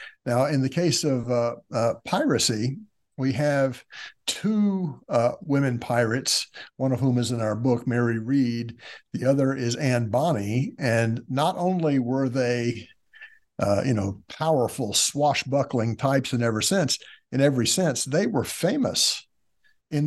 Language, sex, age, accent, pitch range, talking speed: English, male, 60-79, American, 120-145 Hz, 145 wpm